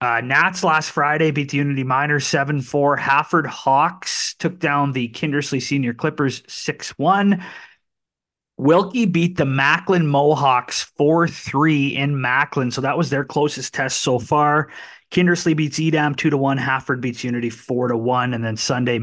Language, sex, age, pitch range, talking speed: English, male, 30-49, 125-155 Hz, 140 wpm